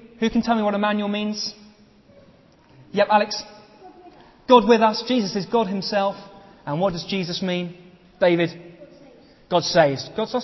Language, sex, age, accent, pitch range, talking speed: English, male, 30-49, British, 160-225 Hz, 150 wpm